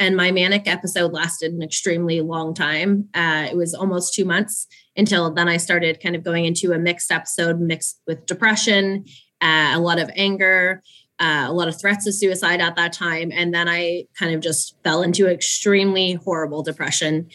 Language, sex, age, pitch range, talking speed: English, female, 20-39, 160-180 Hz, 190 wpm